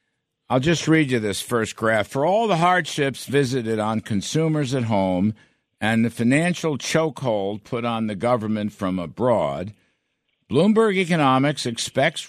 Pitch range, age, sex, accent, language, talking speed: 105-150 Hz, 60-79, male, American, English, 140 wpm